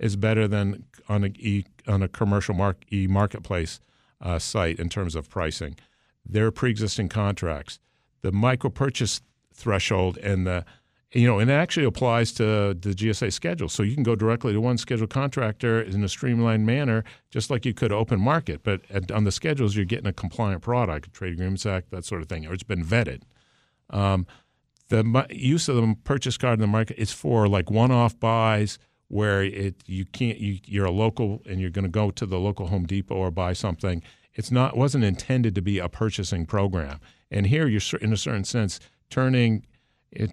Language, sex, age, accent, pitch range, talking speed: English, male, 50-69, American, 95-115 Hz, 190 wpm